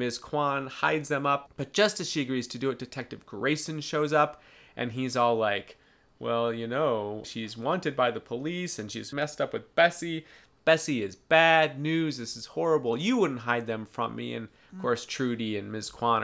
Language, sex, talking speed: English, male, 205 wpm